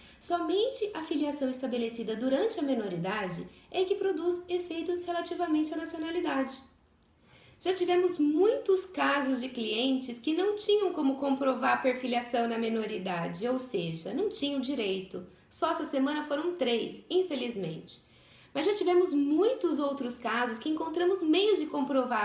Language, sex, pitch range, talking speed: Portuguese, female, 245-370 Hz, 140 wpm